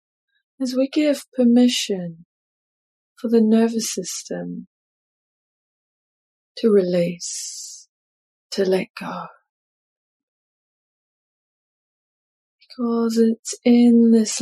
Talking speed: 70 wpm